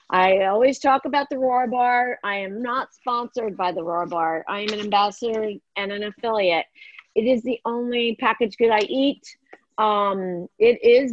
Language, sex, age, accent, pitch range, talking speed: English, female, 40-59, American, 205-255 Hz, 180 wpm